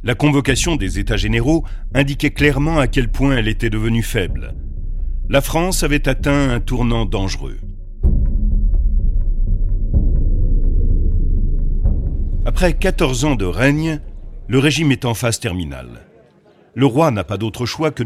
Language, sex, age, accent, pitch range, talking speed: French, male, 40-59, French, 105-150 Hz, 130 wpm